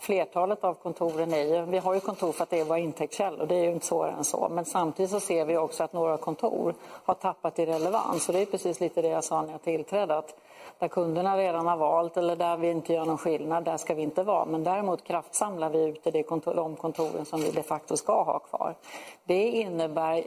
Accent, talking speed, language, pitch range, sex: Swedish, 245 wpm, English, 160-180 Hz, female